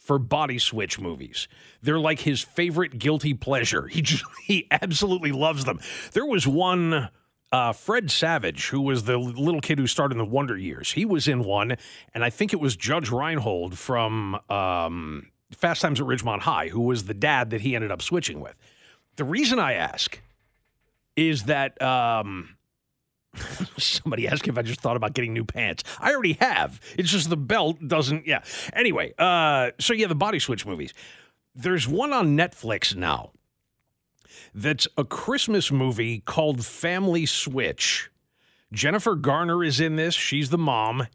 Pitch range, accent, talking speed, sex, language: 115-160 Hz, American, 170 wpm, male, English